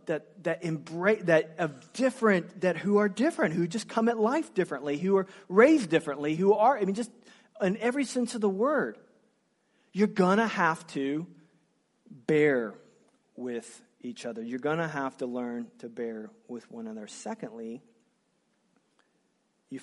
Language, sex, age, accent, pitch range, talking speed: English, male, 40-59, American, 145-210 Hz, 155 wpm